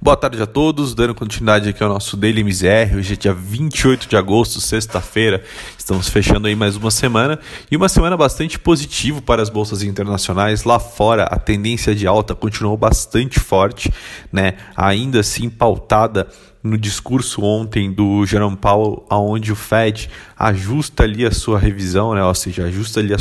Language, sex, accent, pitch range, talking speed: Portuguese, male, Brazilian, 100-120 Hz, 170 wpm